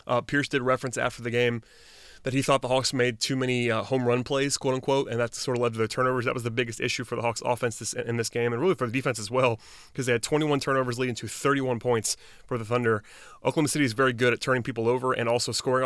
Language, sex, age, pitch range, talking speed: English, male, 30-49, 115-130 Hz, 275 wpm